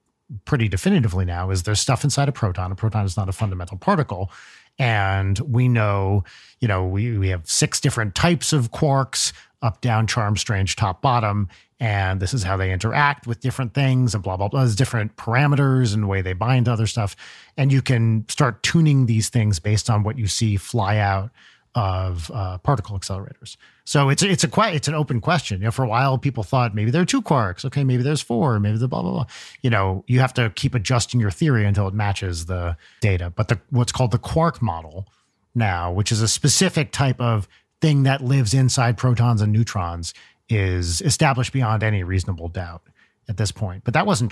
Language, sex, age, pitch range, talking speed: English, male, 40-59, 100-130 Hz, 210 wpm